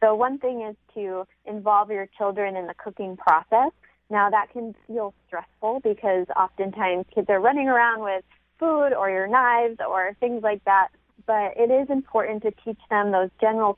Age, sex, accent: 20-39, female, American